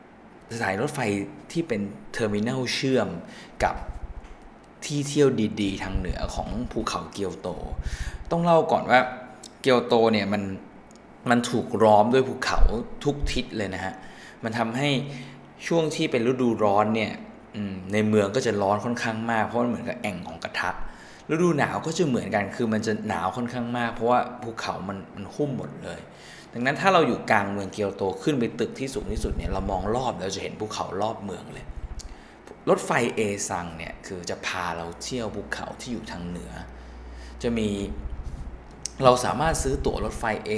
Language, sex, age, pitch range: Thai, male, 20-39, 90-125 Hz